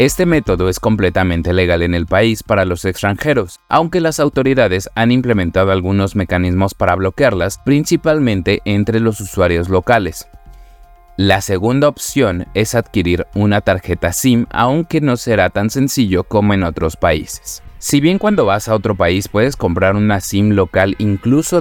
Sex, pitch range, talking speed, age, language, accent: male, 90-120 Hz, 155 wpm, 30-49, Spanish, Mexican